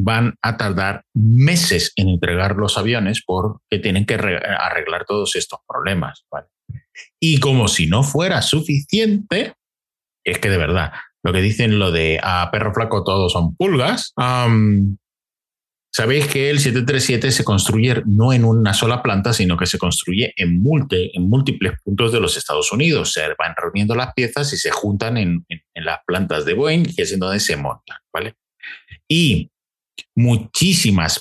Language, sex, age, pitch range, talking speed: Spanish, male, 30-49, 95-130 Hz, 155 wpm